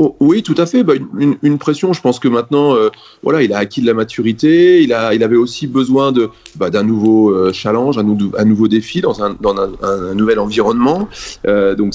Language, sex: French, male